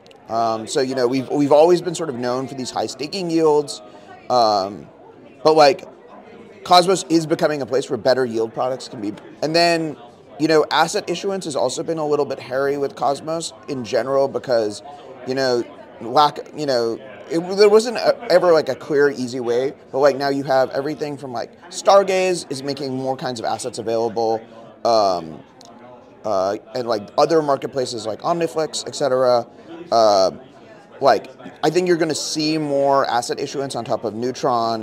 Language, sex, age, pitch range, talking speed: English, male, 30-49, 125-165 Hz, 180 wpm